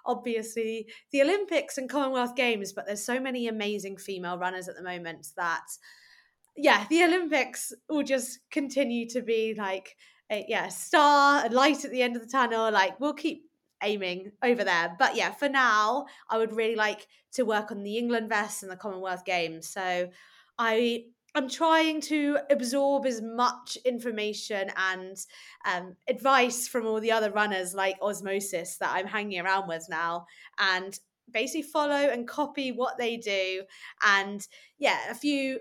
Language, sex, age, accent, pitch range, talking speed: English, female, 20-39, British, 195-260 Hz, 165 wpm